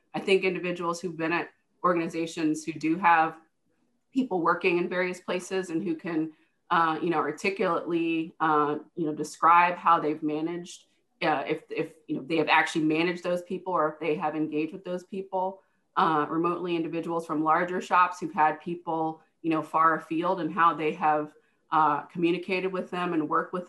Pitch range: 155-185 Hz